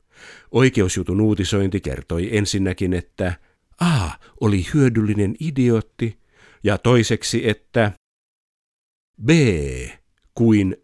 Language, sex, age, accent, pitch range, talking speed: Finnish, male, 50-69, native, 90-125 Hz, 80 wpm